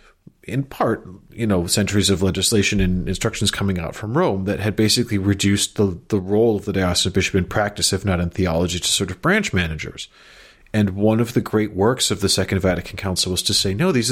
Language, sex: English, male